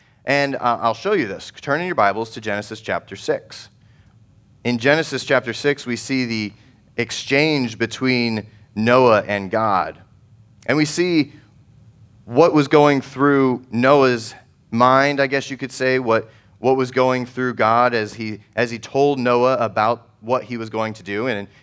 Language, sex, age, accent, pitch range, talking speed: English, male, 30-49, American, 115-140 Hz, 165 wpm